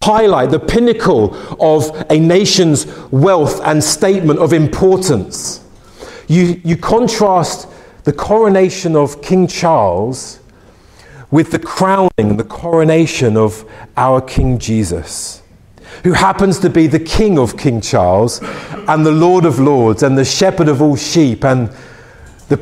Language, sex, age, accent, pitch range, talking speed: English, male, 40-59, British, 140-185 Hz, 135 wpm